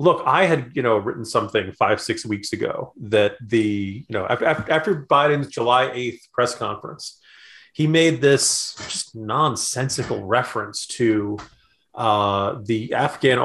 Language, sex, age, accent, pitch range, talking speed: English, male, 30-49, American, 110-140 Hz, 135 wpm